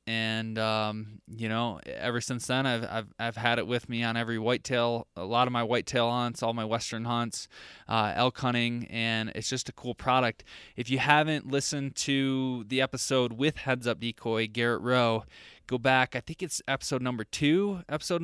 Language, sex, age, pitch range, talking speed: English, male, 20-39, 115-130 Hz, 190 wpm